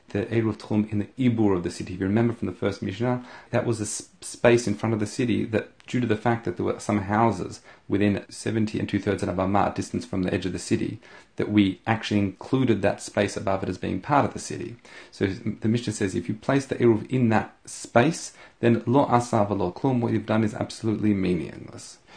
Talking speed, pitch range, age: 240 wpm, 100-115 Hz, 30-49